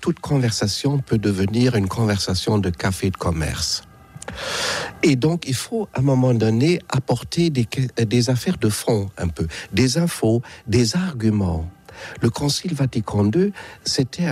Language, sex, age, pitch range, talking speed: French, male, 60-79, 105-145 Hz, 145 wpm